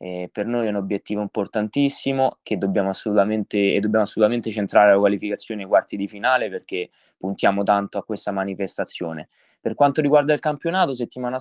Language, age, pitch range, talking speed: Italian, 20-39, 100-120 Hz, 165 wpm